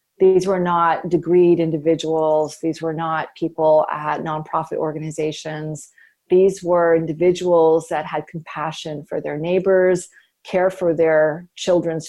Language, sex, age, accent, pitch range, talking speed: English, female, 40-59, American, 155-185 Hz, 125 wpm